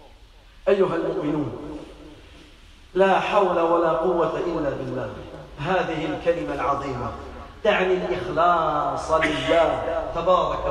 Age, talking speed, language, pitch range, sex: 40-59, 85 wpm, French, 175-200 Hz, male